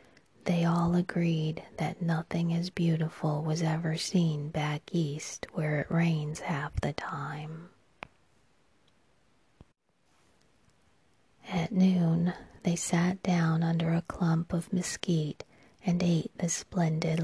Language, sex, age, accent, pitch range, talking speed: English, female, 30-49, American, 160-175 Hz, 110 wpm